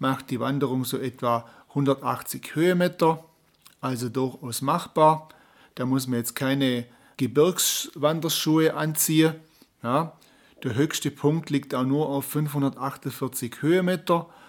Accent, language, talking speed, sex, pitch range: German, German, 110 wpm, male, 130-160 Hz